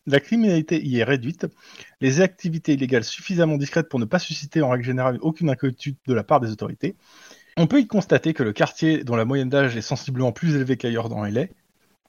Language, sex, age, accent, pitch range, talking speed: French, male, 20-39, French, 130-175 Hz, 210 wpm